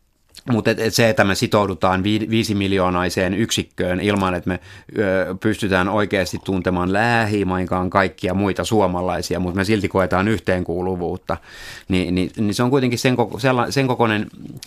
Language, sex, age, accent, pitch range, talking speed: Finnish, male, 30-49, native, 90-115 Hz, 145 wpm